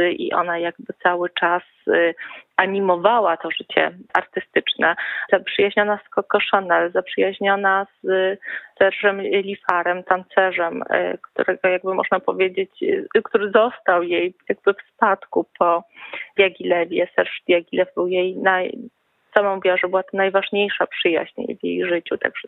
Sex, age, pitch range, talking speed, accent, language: female, 30-49, 180-205 Hz, 115 wpm, native, Polish